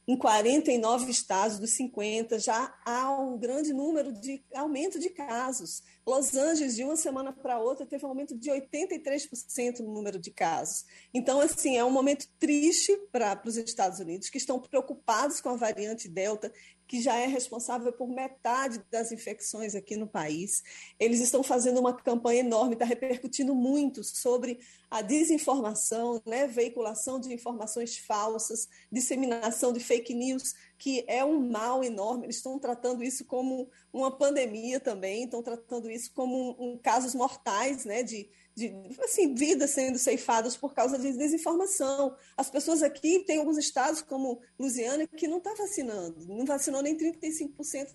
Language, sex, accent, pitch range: Portuguese, female, Brazilian, 230-270 Hz